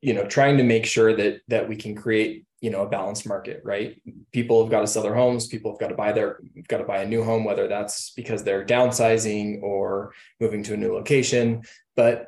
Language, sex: English, male